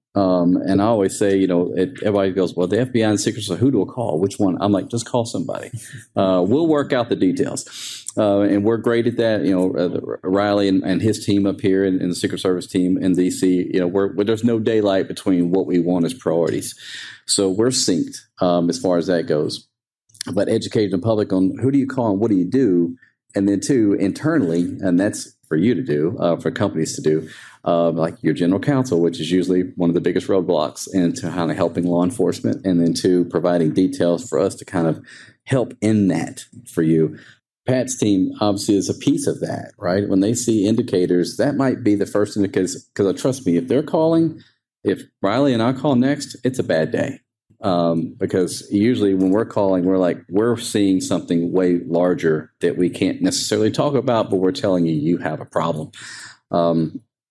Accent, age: American, 40-59